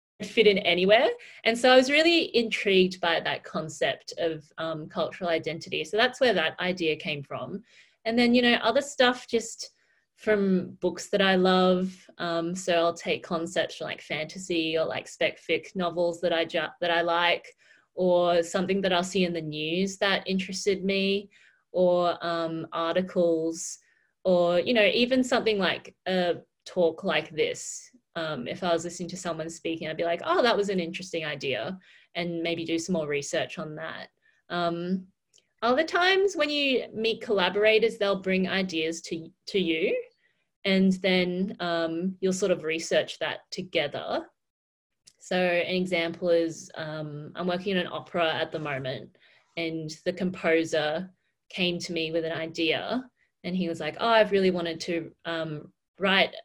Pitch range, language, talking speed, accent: 165-200 Hz, English, 165 wpm, Australian